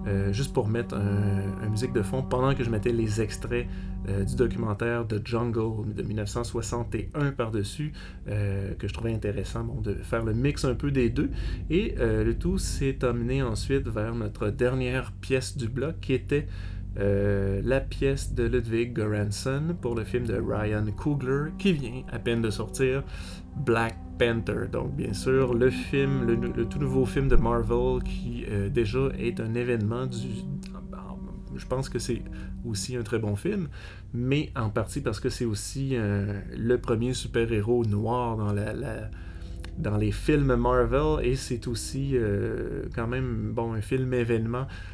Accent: Canadian